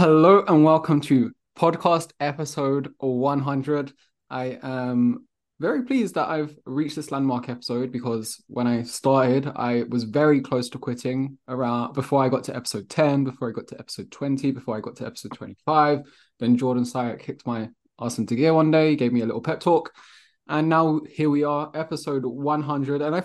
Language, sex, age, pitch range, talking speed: English, male, 20-39, 125-155 Hz, 185 wpm